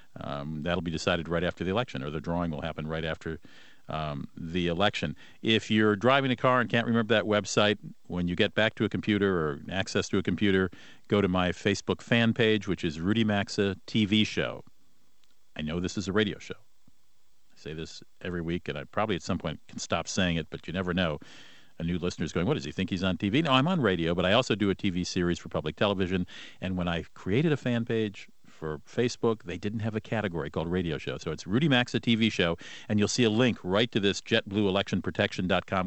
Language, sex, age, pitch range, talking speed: English, male, 50-69, 85-105 Hz, 230 wpm